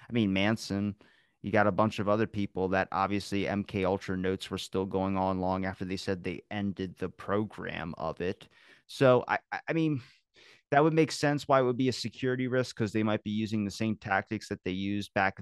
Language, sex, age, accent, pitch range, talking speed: English, male, 30-49, American, 100-125 Hz, 220 wpm